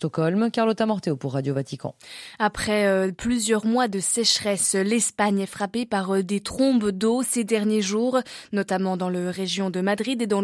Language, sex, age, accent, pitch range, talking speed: French, female, 20-39, French, 195-240 Hz, 160 wpm